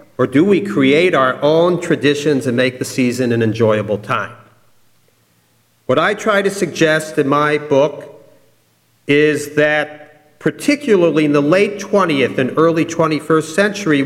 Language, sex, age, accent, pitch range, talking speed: English, male, 50-69, American, 140-200 Hz, 140 wpm